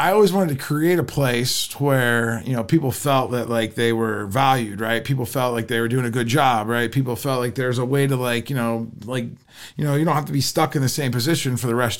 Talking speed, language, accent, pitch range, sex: 270 wpm, English, American, 115-145 Hz, male